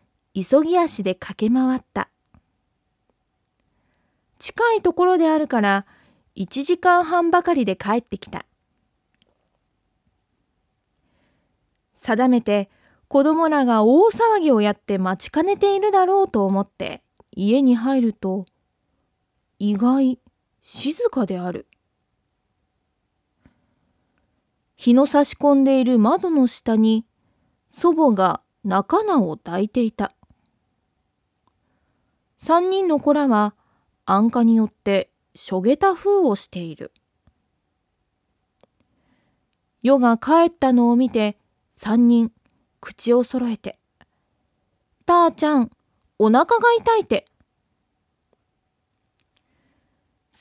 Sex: female